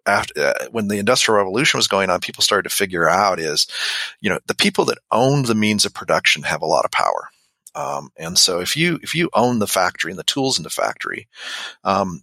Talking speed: 230 wpm